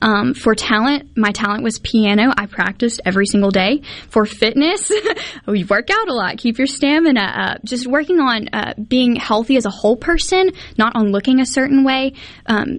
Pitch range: 205-255 Hz